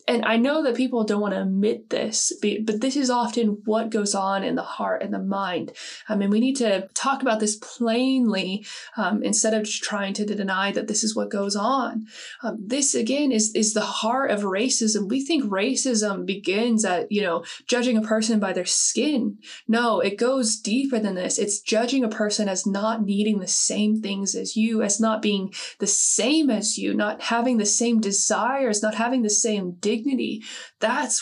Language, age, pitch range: English, 20-39, 210-245 Hz